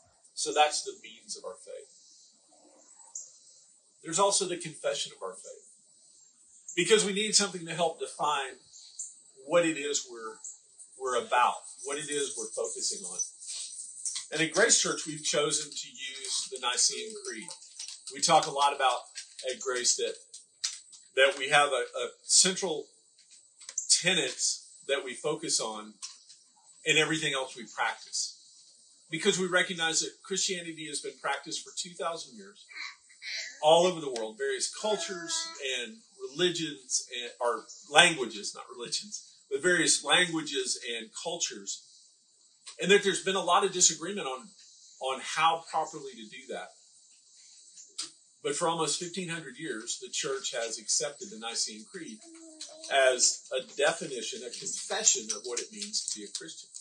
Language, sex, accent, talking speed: English, male, American, 145 wpm